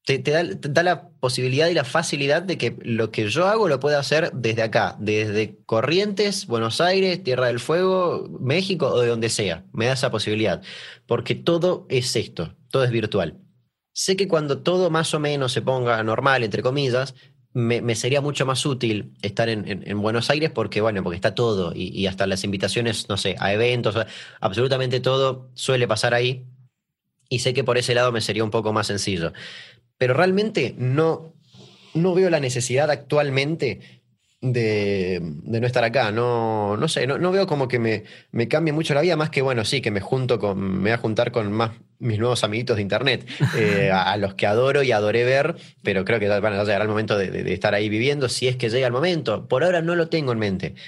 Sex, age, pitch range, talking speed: male, 20-39, 110-140 Hz, 210 wpm